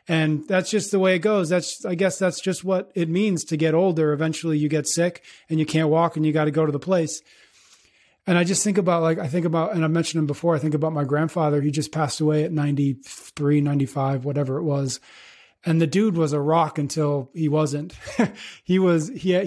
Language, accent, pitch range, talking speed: English, American, 150-180 Hz, 235 wpm